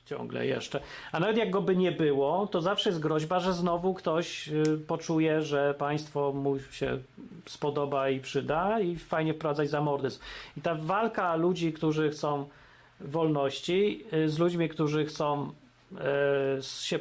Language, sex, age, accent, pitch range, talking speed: Polish, male, 40-59, native, 145-180 Hz, 140 wpm